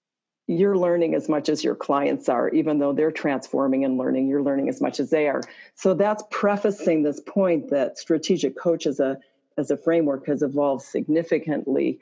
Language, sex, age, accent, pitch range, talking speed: English, female, 40-59, American, 145-175 Hz, 180 wpm